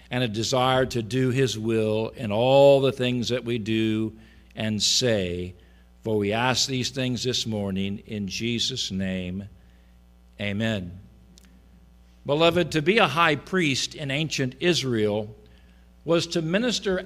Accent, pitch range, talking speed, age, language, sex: American, 110-155 Hz, 135 wpm, 50-69, English, male